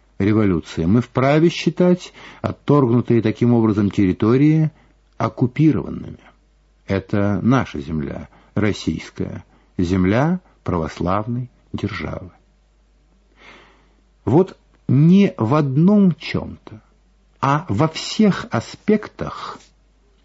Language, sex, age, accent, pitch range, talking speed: Russian, male, 50-69, native, 110-160 Hz, 75 wpm